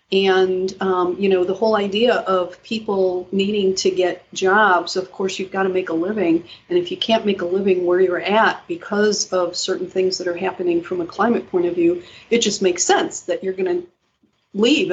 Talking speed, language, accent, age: 215 wpm, English, American, 40-59